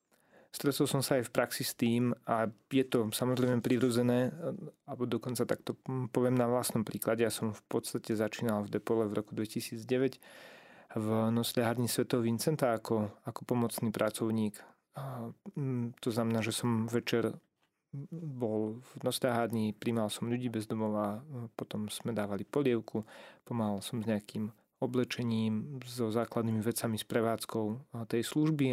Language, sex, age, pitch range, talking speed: Slovak, male, 30-49, 110-125 Hz, 140 wpm